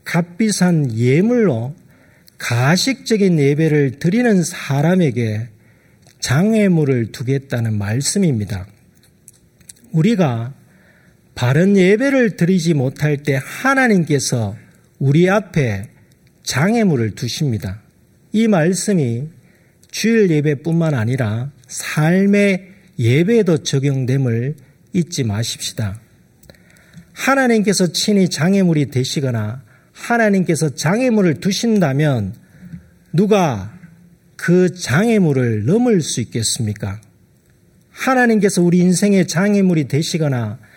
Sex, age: male, 40-59